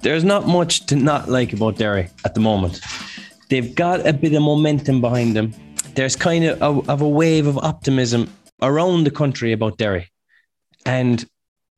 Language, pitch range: English, 120-150 Hz